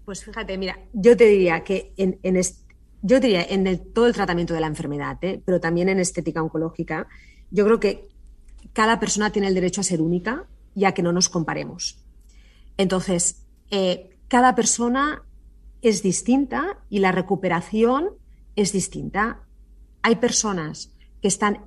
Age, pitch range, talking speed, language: 30-49, 170-200 Hz, 160 wpm, Spanish